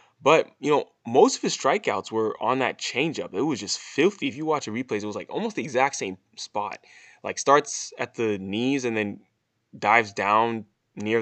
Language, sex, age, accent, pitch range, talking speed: English, male, 10-29, American, 105-120 Hz, 205 wpm